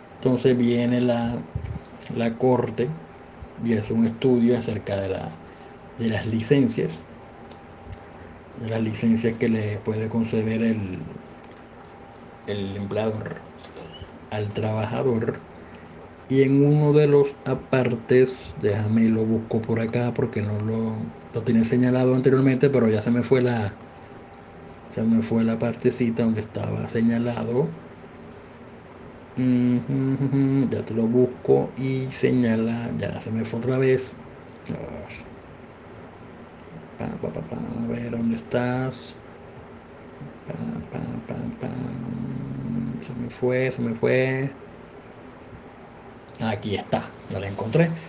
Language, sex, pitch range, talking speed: Spanish, male, 105-125 Hz, 120 wpm